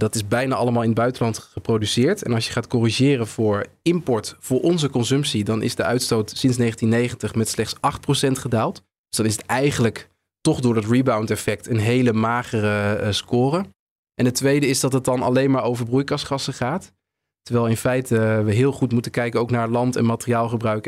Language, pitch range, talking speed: Dutch, 115-135 Hz, 190 wpm